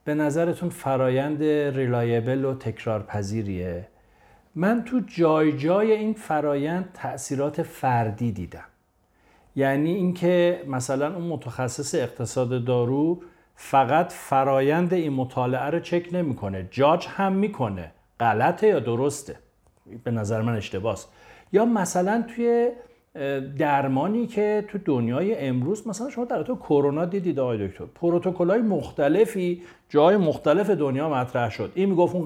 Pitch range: 130-195 Hz